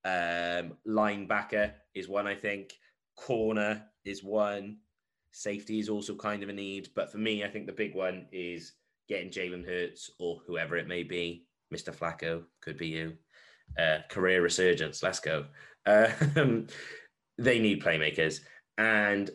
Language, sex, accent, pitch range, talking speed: English, male, British, 80-105 Hz, 150 wpm